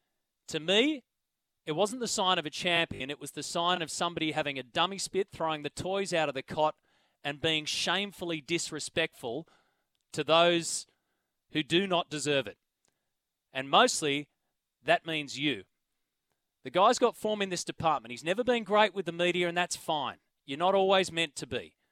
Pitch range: 145-175 Hz